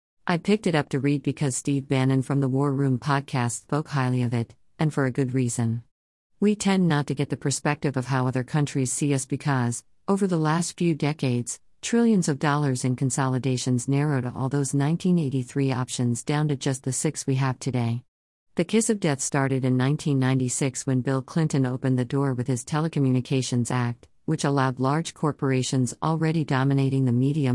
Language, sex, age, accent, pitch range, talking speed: English, female, 50-69, American, 130-150 Hz, 185 wpm